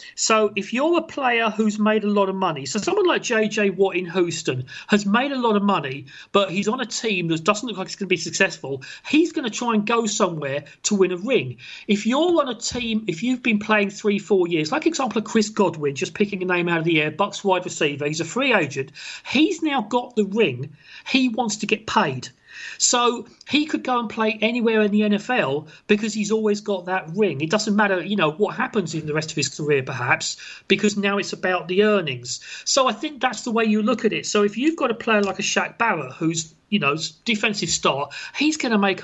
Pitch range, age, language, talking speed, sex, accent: 180-225 Hz, 40-59, English, 240 wpm, male, British